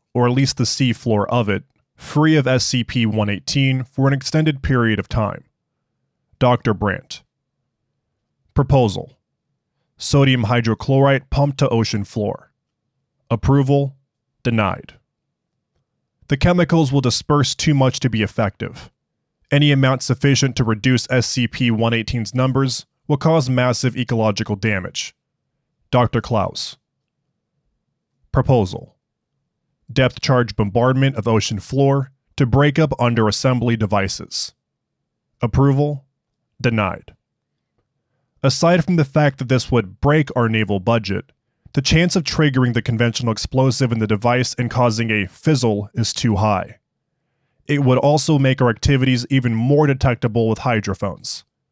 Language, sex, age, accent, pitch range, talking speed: English, male, 20-39, American, 115-140 Hz, 120 wpm